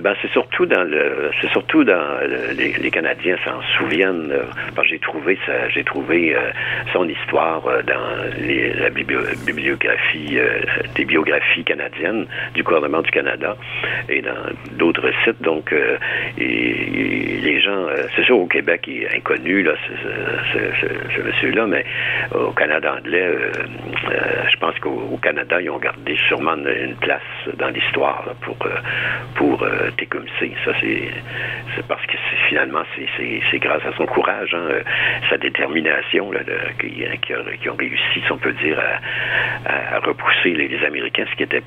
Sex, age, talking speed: male, 60-79, 175 wpm